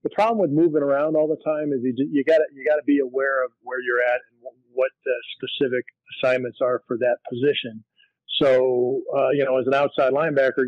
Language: English